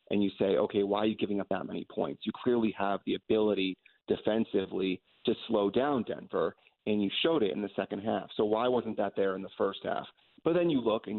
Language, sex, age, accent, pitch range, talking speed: English, male, 30-49, American, 100-110 Hz, 235 wpm